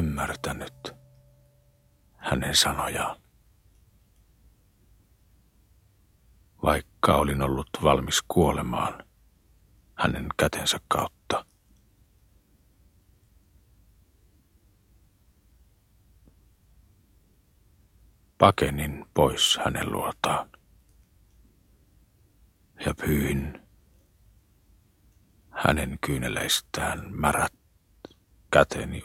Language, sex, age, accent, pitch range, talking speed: Finnish, male, 60-79, native, 80-105 Hz, 45 wpm